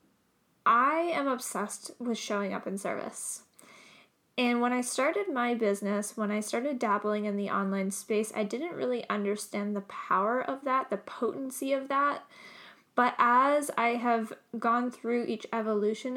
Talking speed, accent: 155 wpm, American